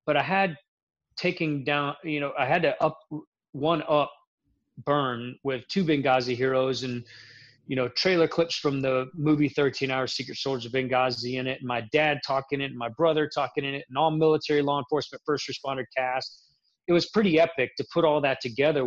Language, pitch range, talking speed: English, 130-150 Hz, 195 wpm